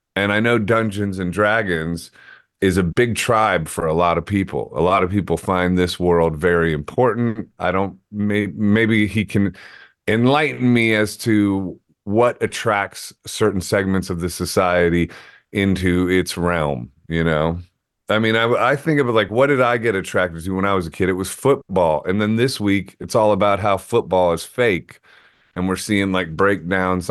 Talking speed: 185 wpm